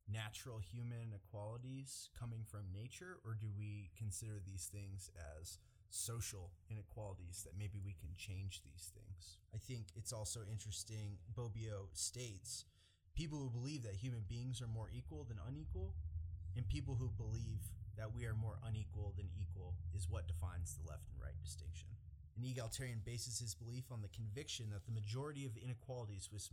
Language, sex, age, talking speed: English, male, 30-49, 165 wpm